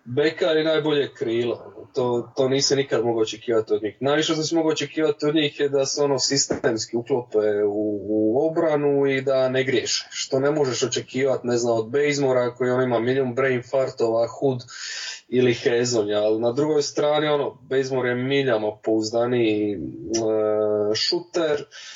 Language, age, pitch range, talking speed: English, 20-39, 115-145 Hz, 165 wpm